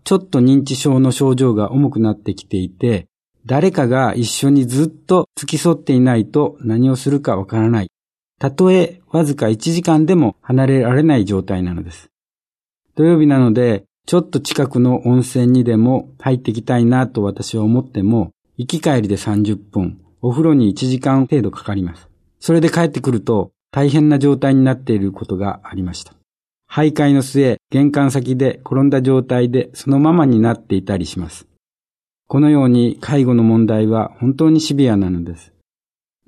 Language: Japanese